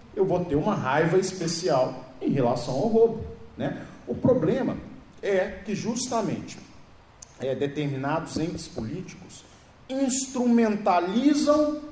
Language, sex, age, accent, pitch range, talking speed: Portuguese, male, 40-59, Brazilian, 150-210 Hz, 100 wpm